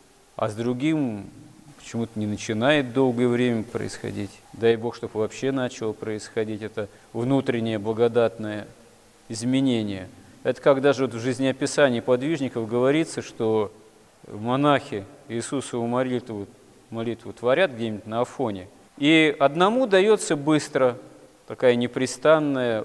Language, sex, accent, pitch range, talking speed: Russian, male, native, 110-140 Hz, 110 wpm